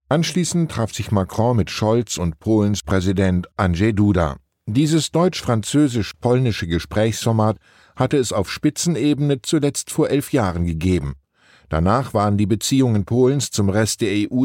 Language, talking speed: German, 135 wpm